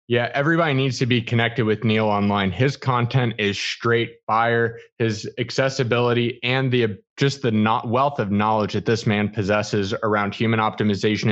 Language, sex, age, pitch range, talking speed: English, male, 20-39, 105-125 Hz, 165 wpm